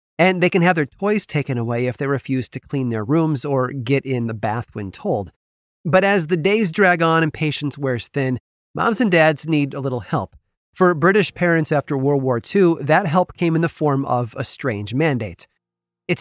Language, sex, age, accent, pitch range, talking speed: English, male, 30-49, American, 120-170 Hz, 210 wpm